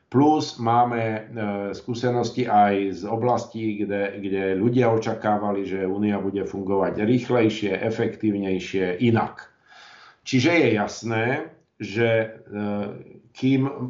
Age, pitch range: 50-69, 105-125 Hz